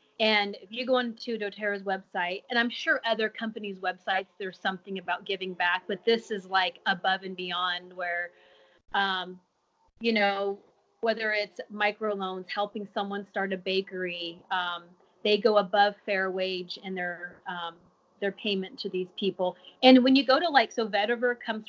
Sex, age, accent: female, 30-49, American